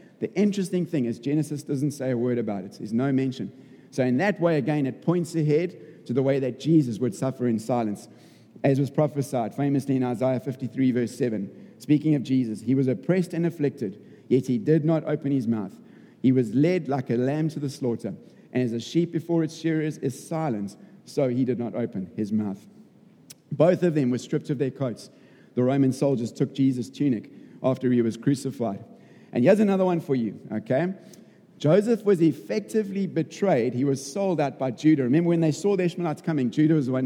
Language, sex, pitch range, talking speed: English, male, 125-160 Hz, 205 wpm